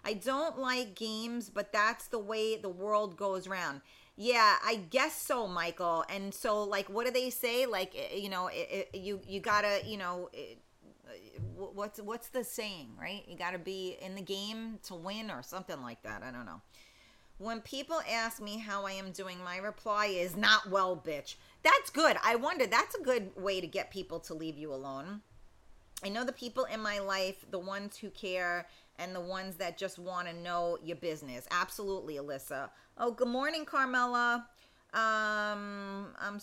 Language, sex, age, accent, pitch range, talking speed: English, female, 40-59, American, 185-225 Hz, 190 wpm